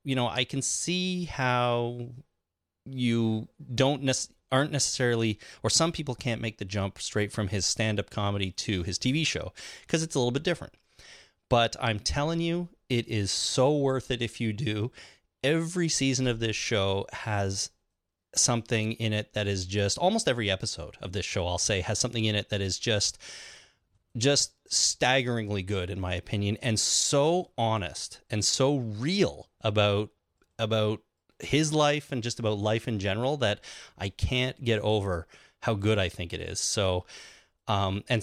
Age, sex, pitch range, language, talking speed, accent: 30-49, male, 100-130 Hz, English, 170 wpm, American